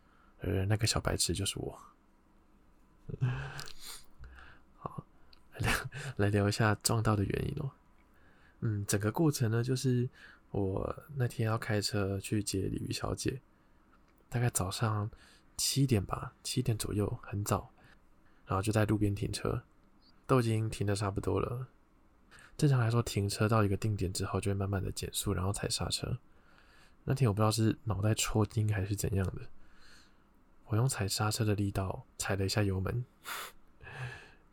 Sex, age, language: male, 20-39, Chinese